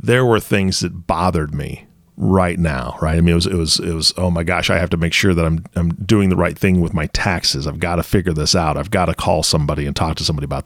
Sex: male